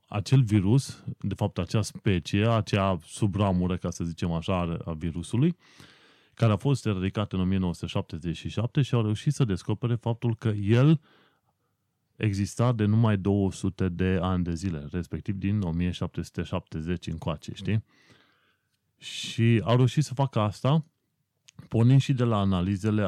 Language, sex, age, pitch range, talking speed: Romanian, male, 30-49, 90-120 Hz, 135 wpm